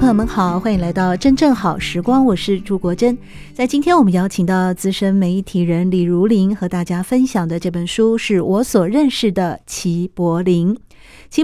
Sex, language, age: female, Chinese, 50-69